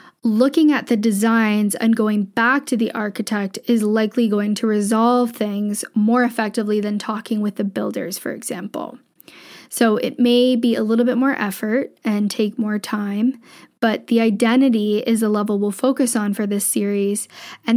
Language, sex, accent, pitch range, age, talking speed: English, female, American, 210-245 Hz, 10-29, 170 wpm